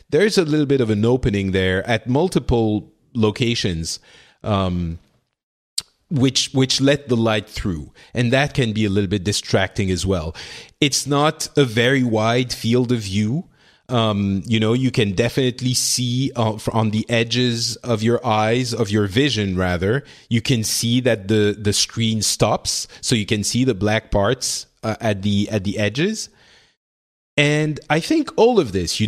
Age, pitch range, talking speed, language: 30-49, 105-135 Hz, 170 wpm, English